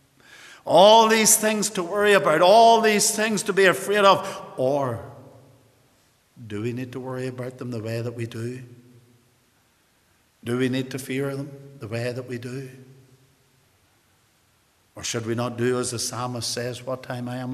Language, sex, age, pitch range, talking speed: English, male, 60-79, 110-145 Hz, 170 wpm